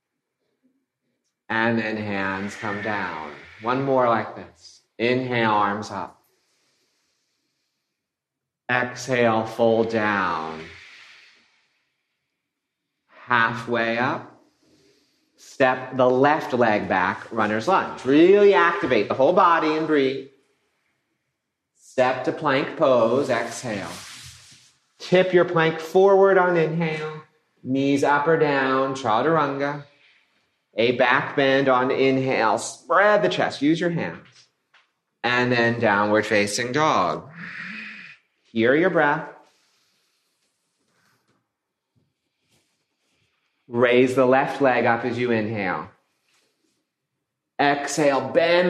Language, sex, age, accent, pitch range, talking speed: English, male, 40-59, American, 115-155 Hz, 95 wpm